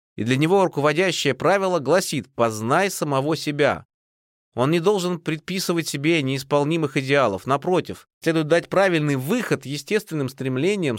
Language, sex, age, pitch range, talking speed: Russian, male, 30-49, 140-180 Hz, 125 wpm